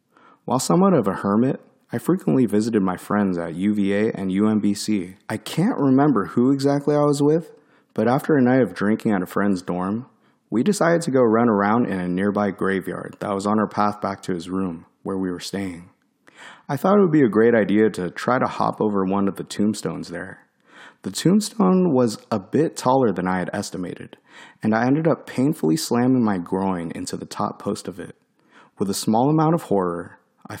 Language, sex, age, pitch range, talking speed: English, male, 30-49, 95-120 Hz, 205 wpm